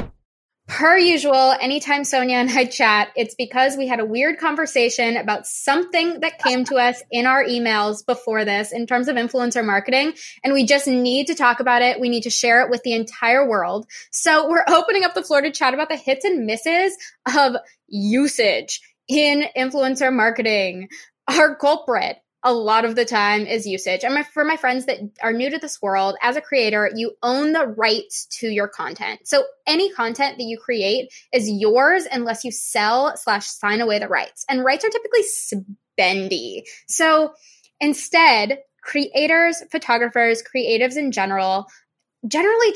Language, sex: English, female